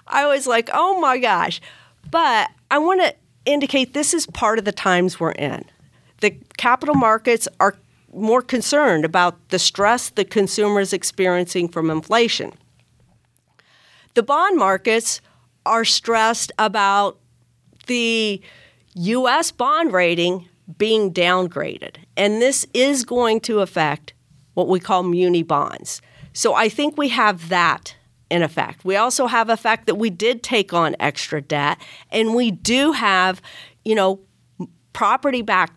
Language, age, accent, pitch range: English, 50-69, American, 175-245 Hz